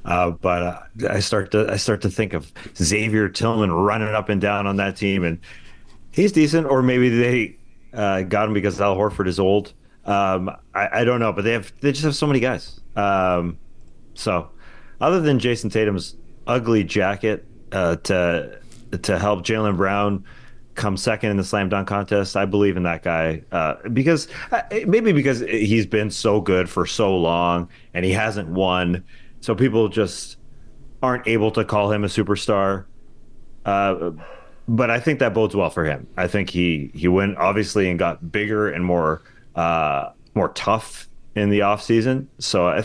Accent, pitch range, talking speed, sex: American, 90-110 Hz, 180 wpm, male